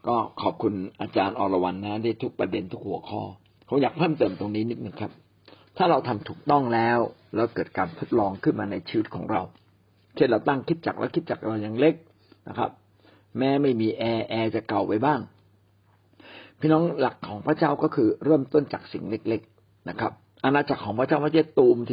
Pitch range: 105-145 Hz